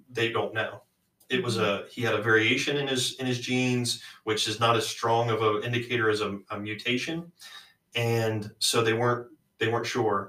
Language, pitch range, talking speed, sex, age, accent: English, 110-130 Hz, 200 wpm, male, 20-39, American